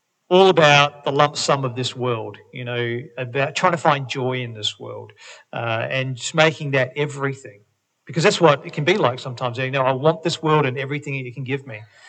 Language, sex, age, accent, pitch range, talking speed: English, male, 40-59, Australian, 125-155 Hz, 225 wpm